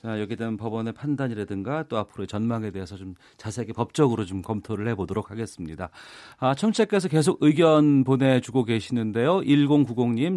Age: 40-59